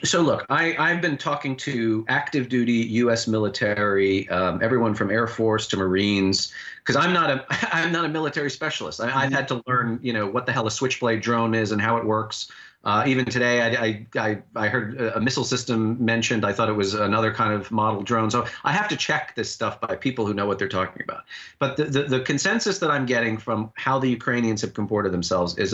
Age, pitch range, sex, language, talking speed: 40-59, 110-140 Hz, male, English, 220 wpm